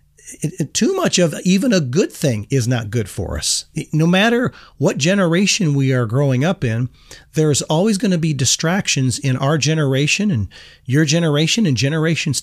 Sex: male